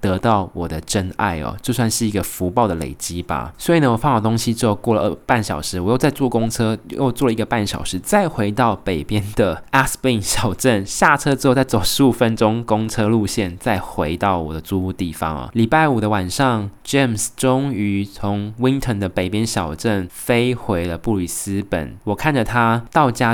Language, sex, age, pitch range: Chinese, male, 20-39, 100-135 Hz